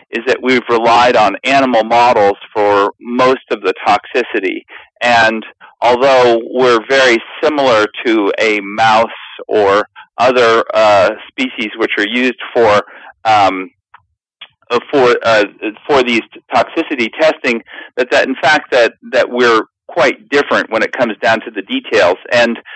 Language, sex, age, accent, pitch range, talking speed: English, male, 40-59, American, 115-140 Hz, 140 wpm